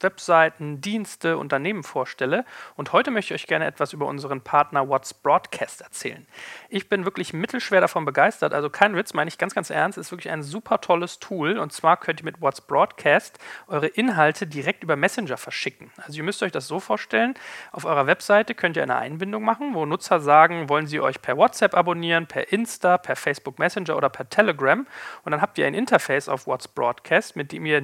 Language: German